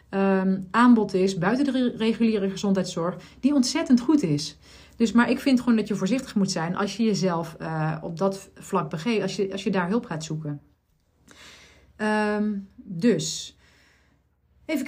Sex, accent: female, Dutch